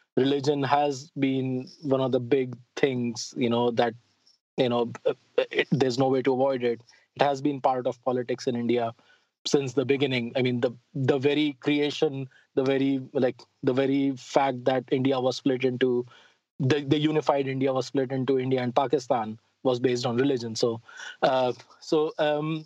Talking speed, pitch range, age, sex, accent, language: 175 wpm, 130-155 Hz, 20-39, male, Indian, English